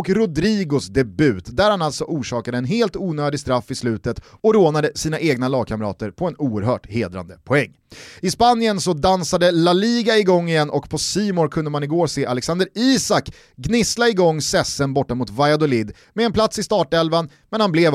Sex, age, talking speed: male, 30-49, 180 wpm